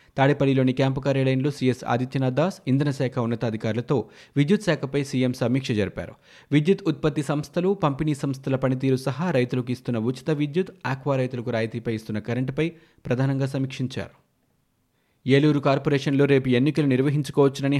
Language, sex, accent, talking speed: Telugu, male, native, 125 wpm